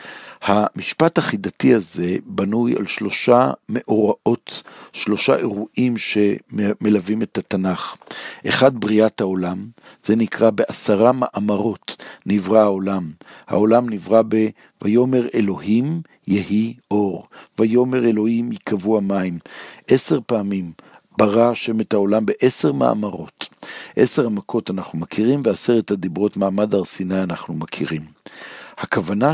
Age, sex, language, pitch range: 60-79, male, Hebrew, 100-120 Hz